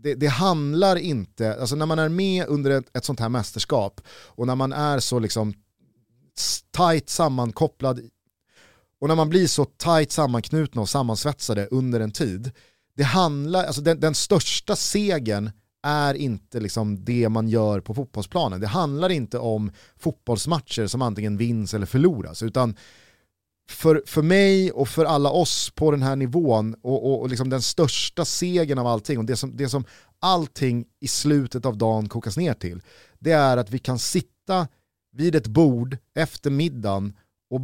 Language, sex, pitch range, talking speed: Swedish, male, 110-150 Hz, 165 wpm